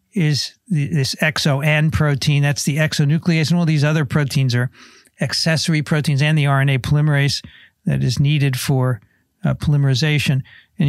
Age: 60-79